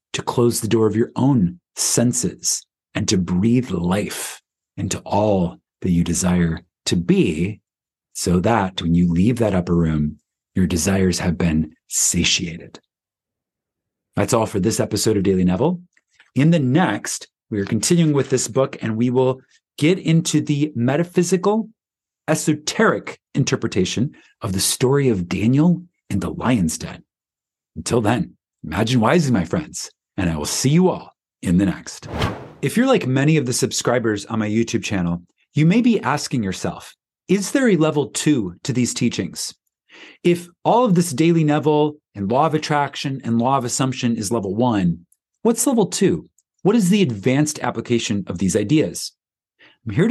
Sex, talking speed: male, 165 wpm